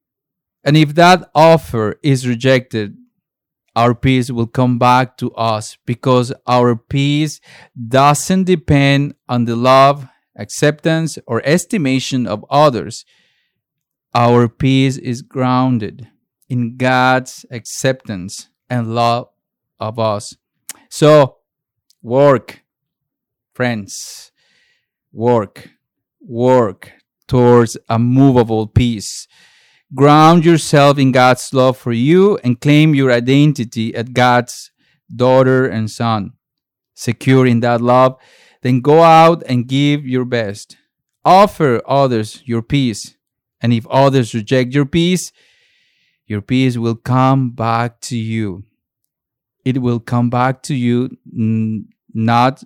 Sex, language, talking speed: male, English, 110 wpm